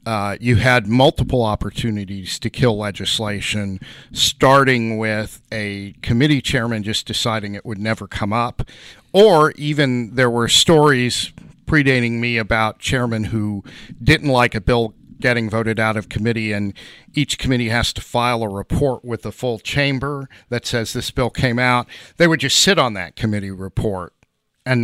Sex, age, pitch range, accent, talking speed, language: male, 50-69, 105-130 Hz, American, 160 wpm, English